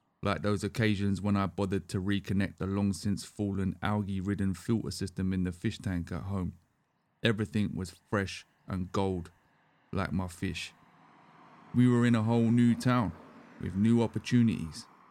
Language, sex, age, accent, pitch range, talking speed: English, male, 30-49, British, 95-110 Hz, 145 wpm